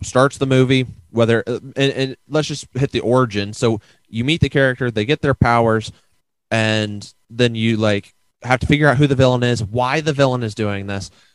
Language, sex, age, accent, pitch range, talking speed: English, male, 30-49, American, 110-130 Hz, 200 wpm